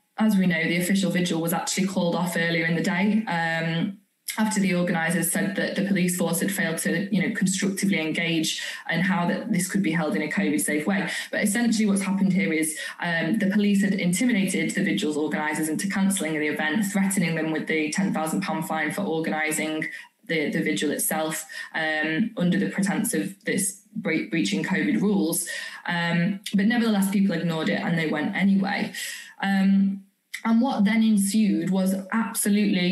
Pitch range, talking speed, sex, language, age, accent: 170-205 Hz, 180 wpm, female, English, 20-39, British